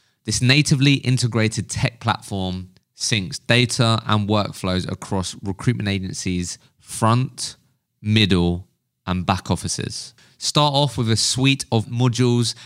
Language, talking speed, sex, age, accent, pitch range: English, 115 wpm, male, 20-39, British, 100-130 Hz